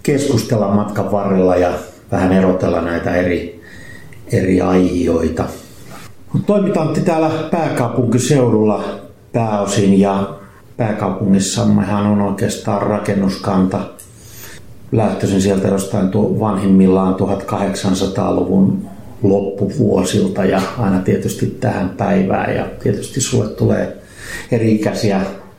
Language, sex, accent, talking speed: Finnish, male, native, 80 wpm